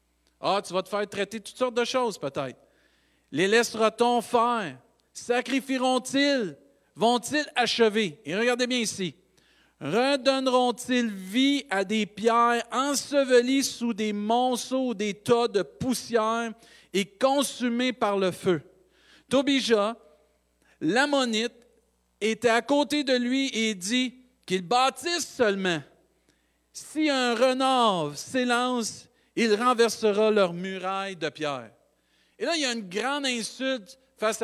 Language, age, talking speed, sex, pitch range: French, 50-69, 120 wpm, male, 180-240 Hz